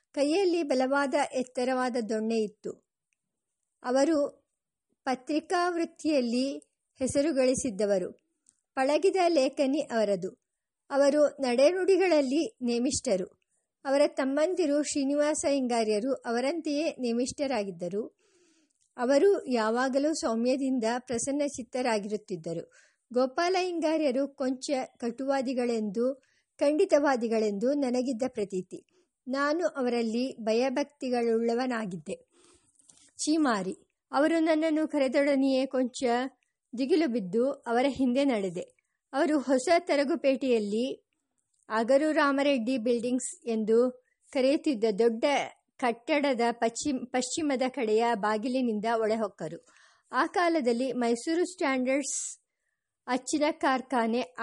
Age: 50-69